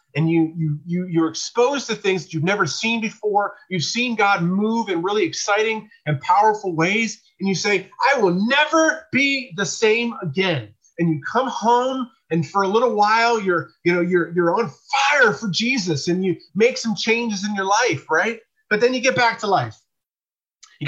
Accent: American